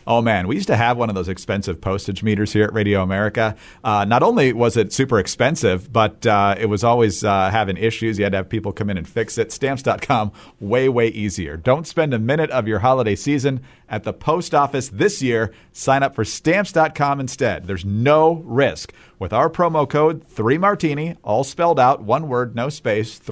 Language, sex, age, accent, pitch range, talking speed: English, male, 40-59, American, 105-150 Hz, 205 wpm